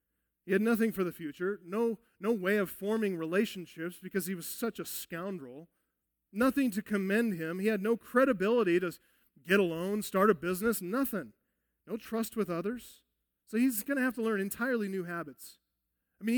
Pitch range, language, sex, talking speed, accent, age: 130-210 Hz, English, male, 180 wpm, American, 40-59